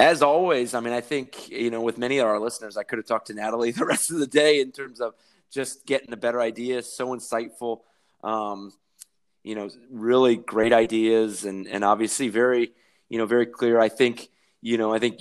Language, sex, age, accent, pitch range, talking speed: English, male, 20-39, American, 105-120 Hz, 215 wpm